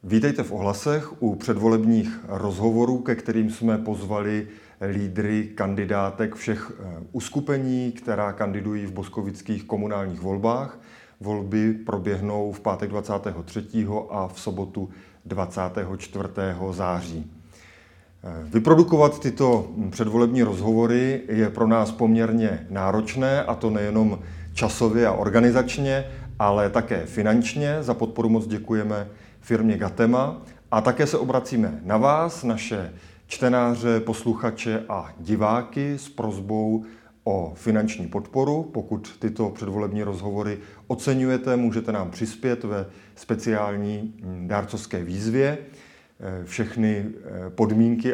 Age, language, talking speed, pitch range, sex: 30-49, Czech, 105 wpm, 100-115 Hz, male